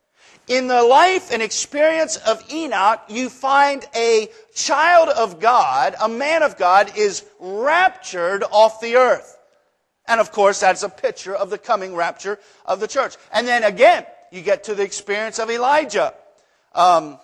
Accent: American